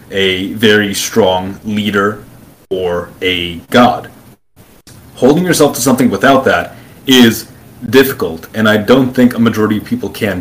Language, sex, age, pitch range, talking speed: English, male, 30-49, 95-120 Hz, 140 wpm